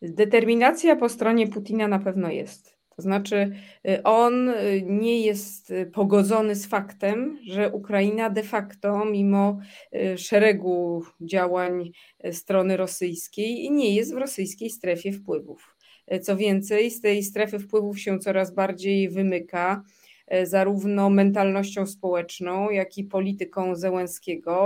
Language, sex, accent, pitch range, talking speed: Polish, female, native, 185-215 Hz, 115 wpm